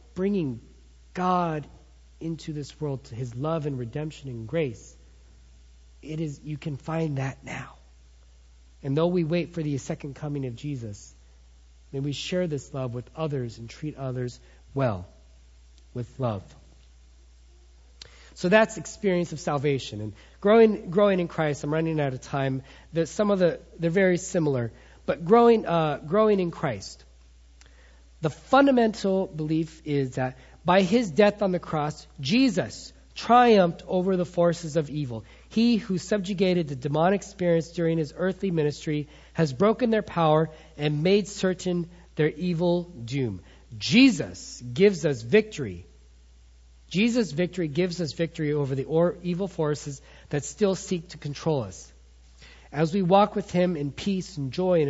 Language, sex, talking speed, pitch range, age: English, male, 150 wpm, 120-180 Hz, 40-59